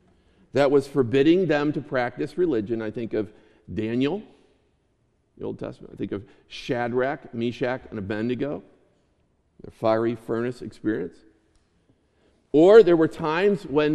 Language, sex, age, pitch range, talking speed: English, male, 50-69, 125-180 Hz, 130 wpm